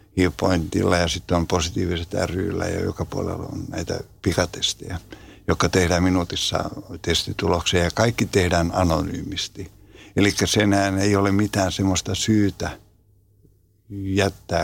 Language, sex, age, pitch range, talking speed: Finnish, male, 60-79, 90-100 Hz, 110 wpm